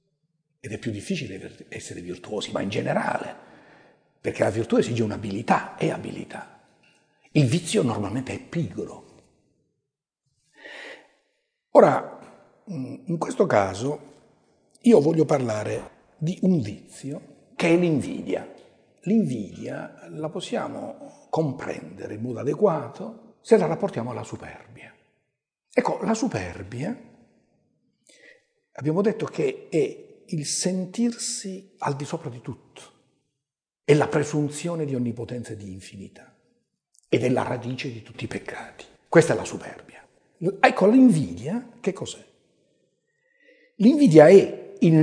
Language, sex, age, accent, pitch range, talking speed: Italian, male, 60-79, native, 130-205 Hz, 115 wpm